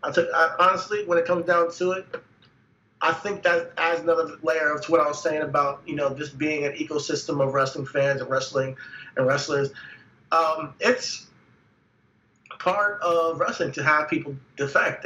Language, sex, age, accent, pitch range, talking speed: English, male, 30-49, American, 140-170 Hz, 175 wpm